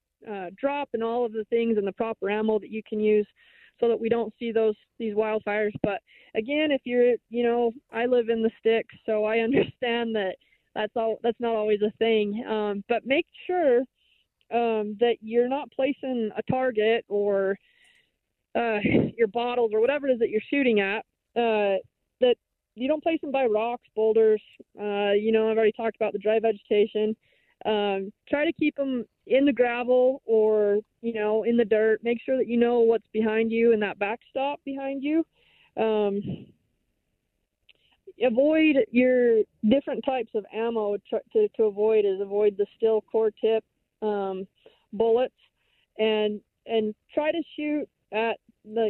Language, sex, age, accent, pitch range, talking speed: English, female, 20-39, American, 215-245 Hz, 170 wpm